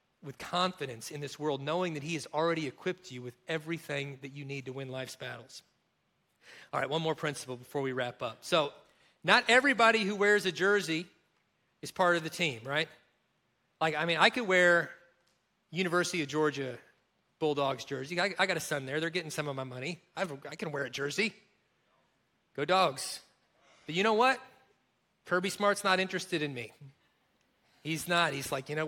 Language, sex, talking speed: English, male, 185 wpm